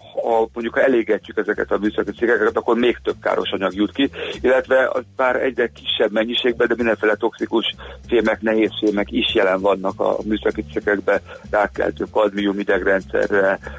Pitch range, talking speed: 100-110 Hz, 155 wpm